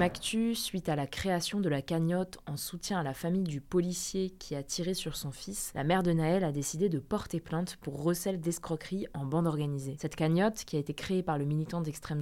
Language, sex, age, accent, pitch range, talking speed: French, female, 20-39, French, 150-185 Hz, 220 wpm